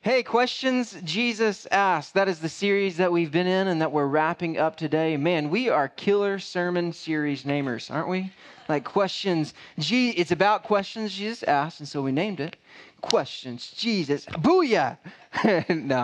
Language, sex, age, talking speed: English, male, 20-39, 165 wpm